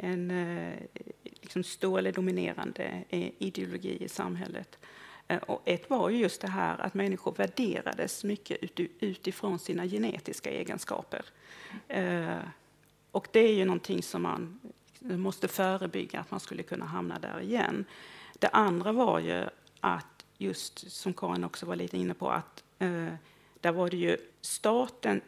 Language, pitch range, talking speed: English, 150-200 Hz, 135 wpm